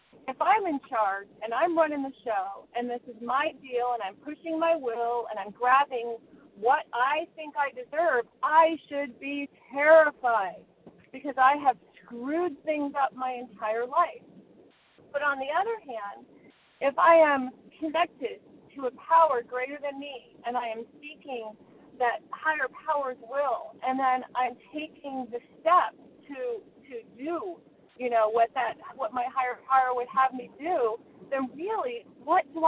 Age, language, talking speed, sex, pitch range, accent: 40-59, English, 160 wpm, female, 245-315 Hz, American